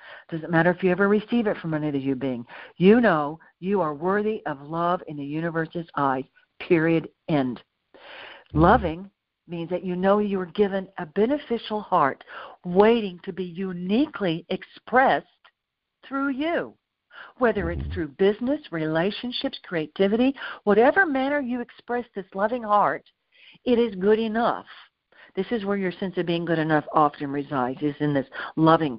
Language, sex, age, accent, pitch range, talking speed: English, female, 60-79, American, 165-230 Hz, 155 wpm